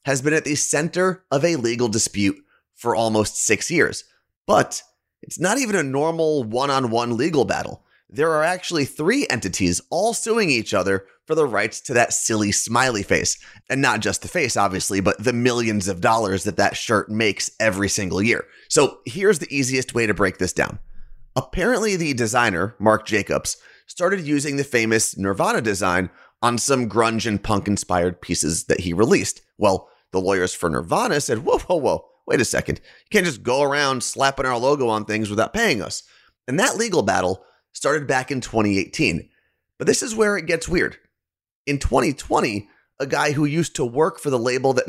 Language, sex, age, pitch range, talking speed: English, male, 30-49, 100-140 Hz, 185 wpm